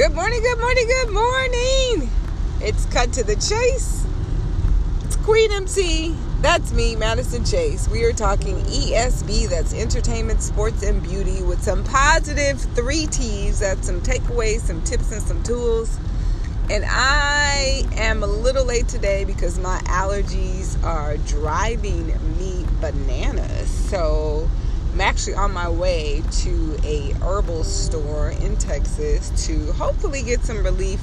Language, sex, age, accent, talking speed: English, female, 30-49, American, 135 wpm